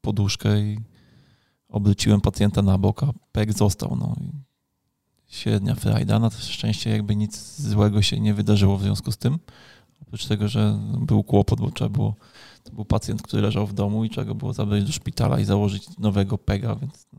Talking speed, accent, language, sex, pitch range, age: 180 wpm, native, Polish, male, 105-120 Hz, 20-39